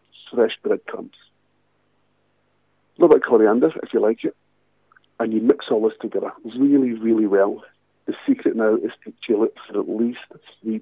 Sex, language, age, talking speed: male, English, 50-69, 170 wpm